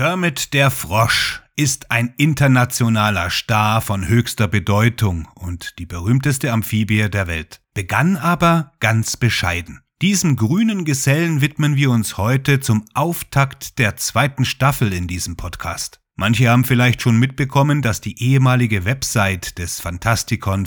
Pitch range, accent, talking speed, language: 105-135 Hz, German, 135 wpm, German